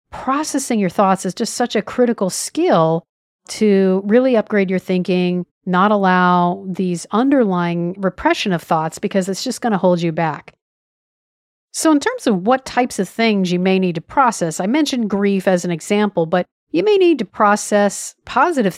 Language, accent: English, American